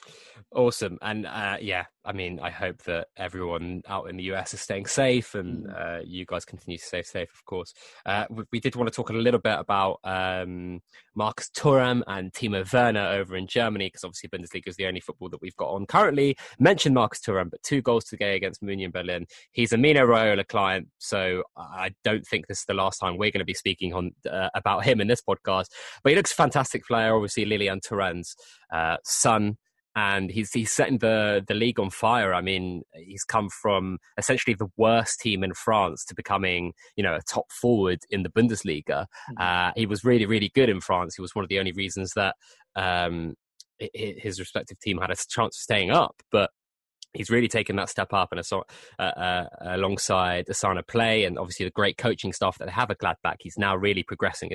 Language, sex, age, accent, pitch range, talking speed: English, male, 20-39, British, 90-115 Hz, 210 wpm